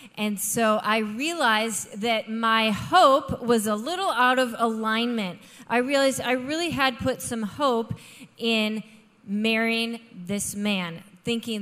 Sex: female